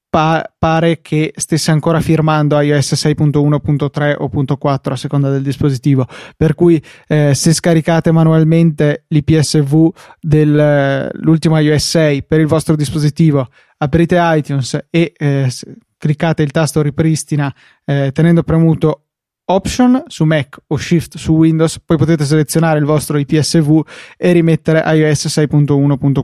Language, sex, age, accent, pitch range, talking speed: Italian, male, 20-39, native, 145-165 Hz, 125 wpm